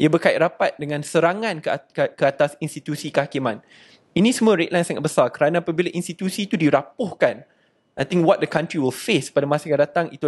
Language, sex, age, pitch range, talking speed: Malay, male, 20-39, 150-195 Hz, 180 wpm